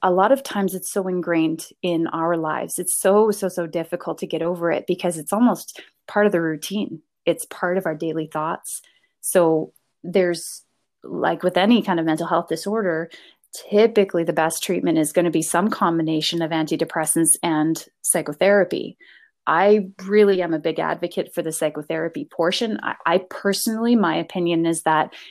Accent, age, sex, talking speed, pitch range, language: American, 20-39, female, 175 wpm, 165-200 Hz, English